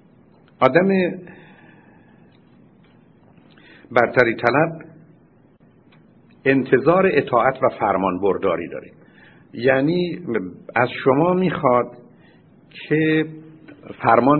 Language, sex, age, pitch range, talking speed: Persian, male, 60-79, 120-165 Hz, 65 wpm